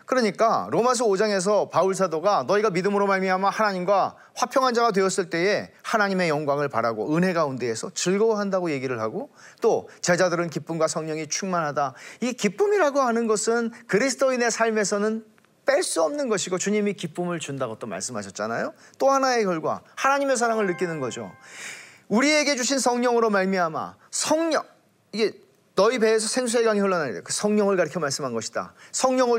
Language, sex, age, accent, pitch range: Korean, male, 40-59, native, 165-235 Hz